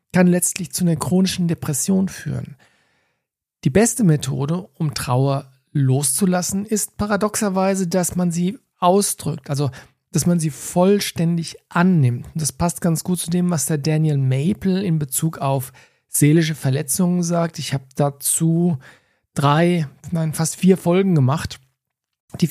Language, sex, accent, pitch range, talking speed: German, male, German, 140-175 Hz, 140 wpm